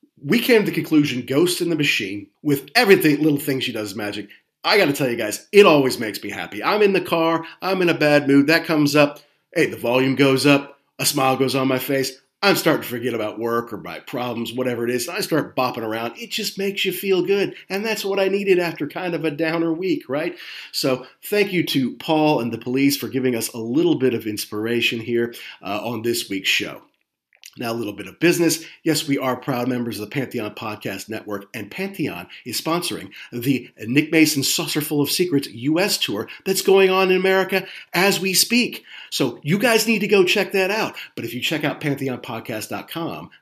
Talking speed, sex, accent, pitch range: 215 wpm, male, American, 125-175 Hz